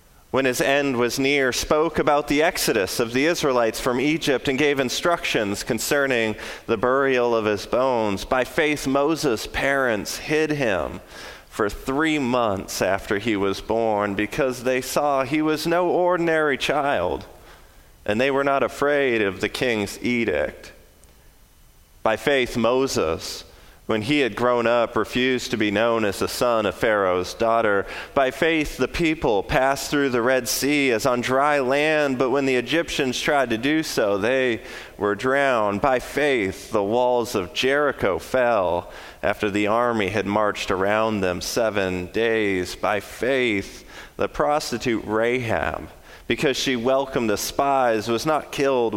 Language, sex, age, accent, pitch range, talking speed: English, male, 30-49, American, 110-140 Hz, 150 wpm